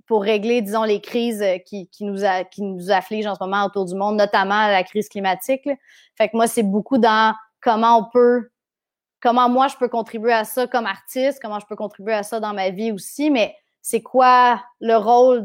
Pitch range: 200-230 Hz